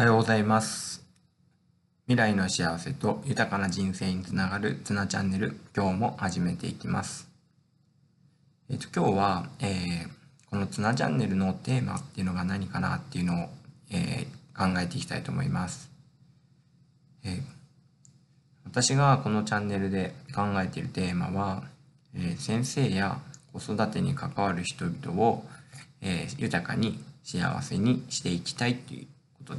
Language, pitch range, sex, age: Japanese, 100-145 Hz, male, 20-39